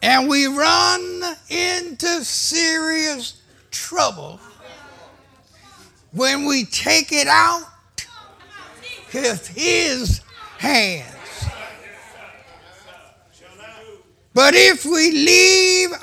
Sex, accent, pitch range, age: male, American, 275-365 Hz, 60-79